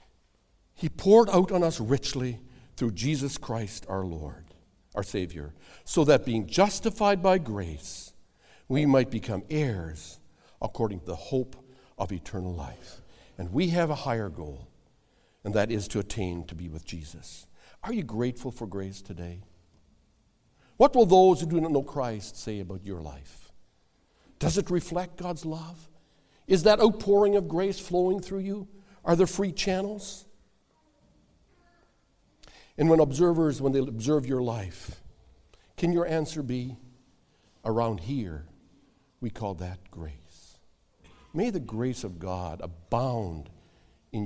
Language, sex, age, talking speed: English, male, 60-79, 140 wpm